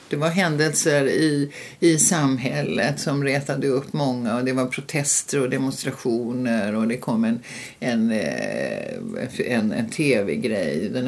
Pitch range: 125-180 Hz